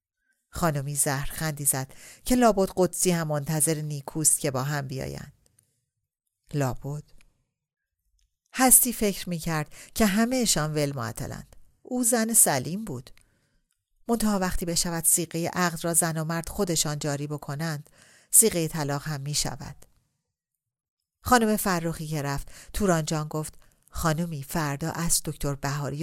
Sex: female